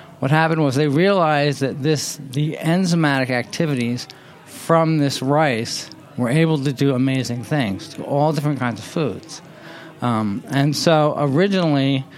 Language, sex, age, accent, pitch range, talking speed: English, male, 40-59, American, 130-160 Hz, 145 wpm